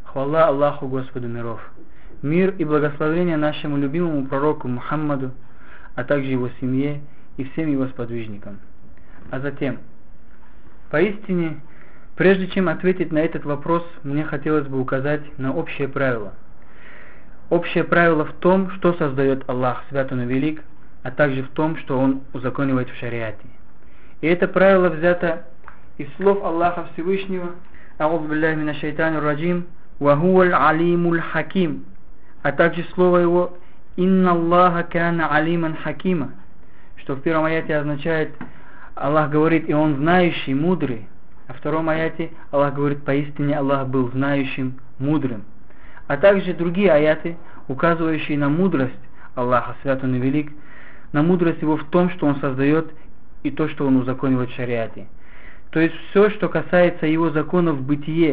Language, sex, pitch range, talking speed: Russian, male, 135-170 Hz, 140 wpm